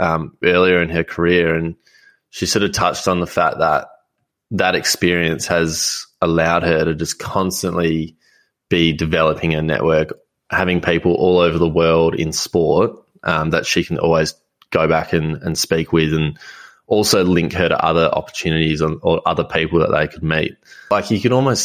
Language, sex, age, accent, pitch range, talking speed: English, male, 20-39, Australian, 80-90 Hz, 175 wpm